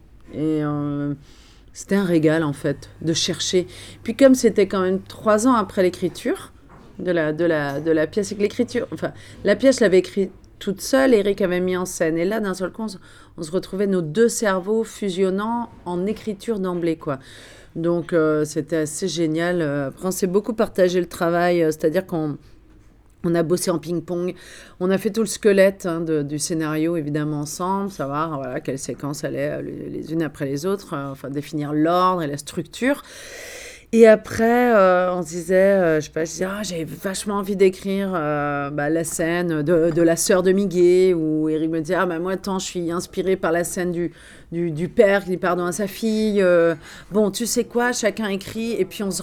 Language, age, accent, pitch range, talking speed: French, 40-59, French, 160-205 Hz, 200 wpm